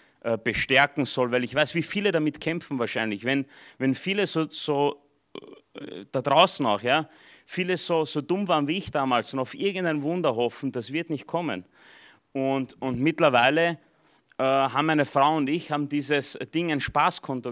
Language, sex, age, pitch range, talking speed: German, male, 30-49, 125-150 Hz, 170 wpm